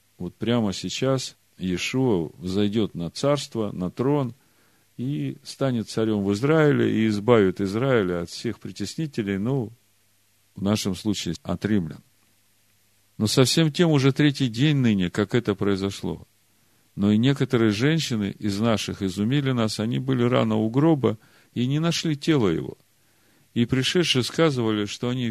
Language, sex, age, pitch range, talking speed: Russian, male, 40-59, 100-135 Hz, 140 wpm